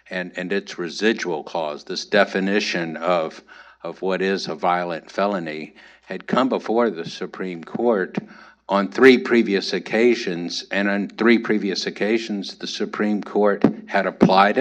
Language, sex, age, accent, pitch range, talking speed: English, male, 60-79, American, 90-100 Hz, 140 wpm